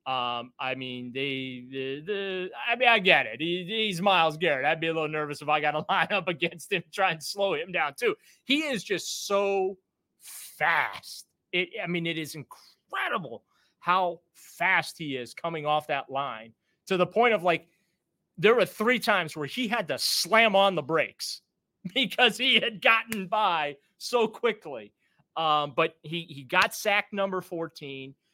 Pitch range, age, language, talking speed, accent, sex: 145-185 Hz, 30-49, English, 175 wpm, American, male